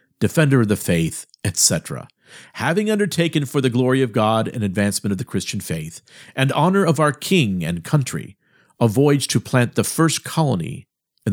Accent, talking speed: American, 175 wpm